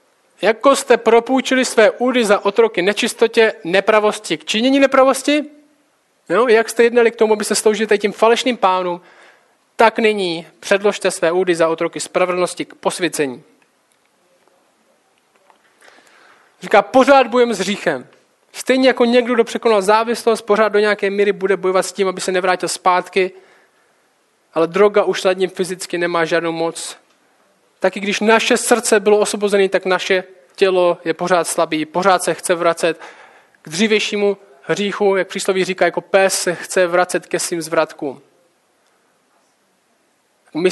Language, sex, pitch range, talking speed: Czech, male, 170-220 Hz, 145 wpm